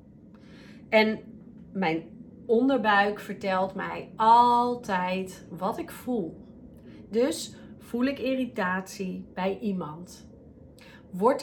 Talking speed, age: 85 wpm, 30-49